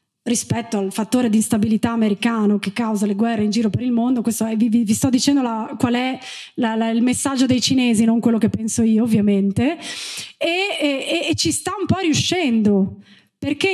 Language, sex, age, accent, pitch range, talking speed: Italian, female, 20-39, native, 230-300 Hz, 190 wpm